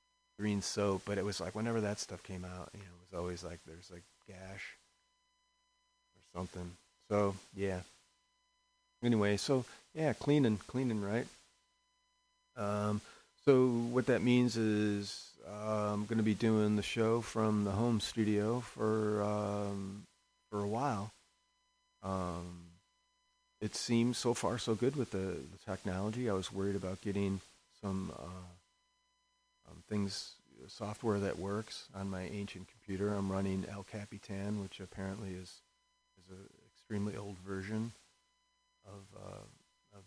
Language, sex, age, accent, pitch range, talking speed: English, male, 40-59, American, 95-125 Hz, 140 wpm